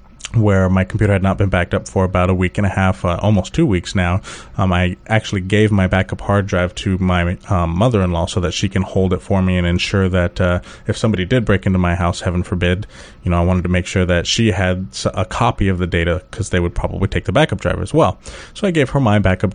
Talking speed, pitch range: 260 wpm, 90-105 Hz